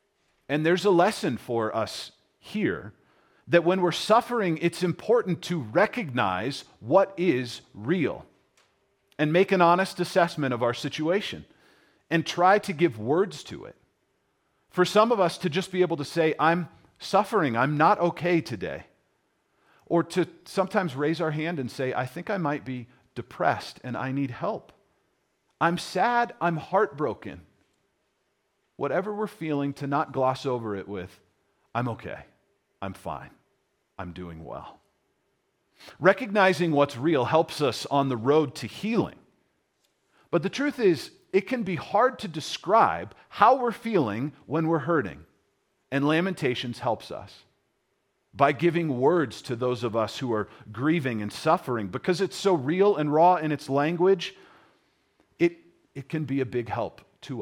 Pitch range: 130-180 Hz